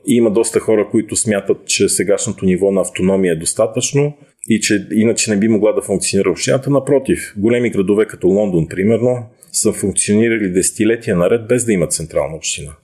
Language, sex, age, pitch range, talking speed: Bulgarian, male, 40-59, 95-120 Hz, 175 wpm